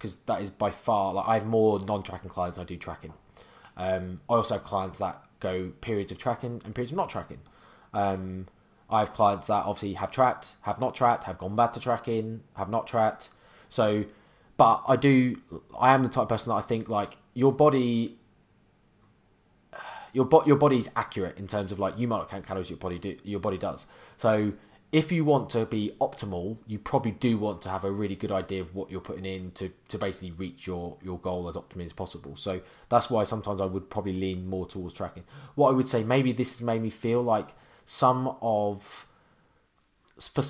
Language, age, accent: English, 20-39, British